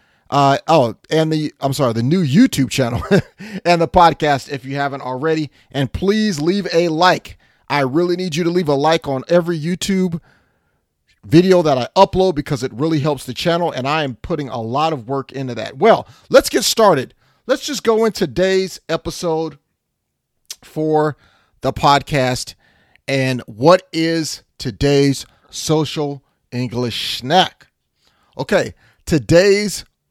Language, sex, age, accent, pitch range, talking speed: English, male, 40-59, American, 125-160 Hz, 150 wpm